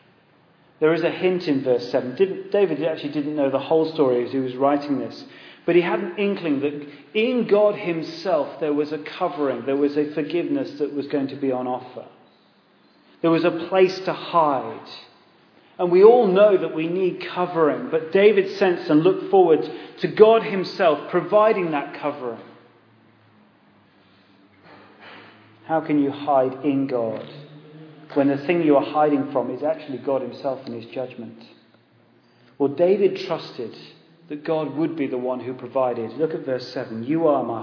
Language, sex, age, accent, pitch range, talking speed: English, male, 40-59, British, 130-175 Hz, 170 wpm